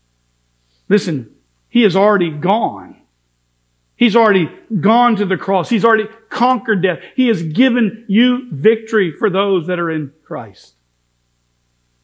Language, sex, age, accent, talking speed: English, male, 50-69, American, 130 wpm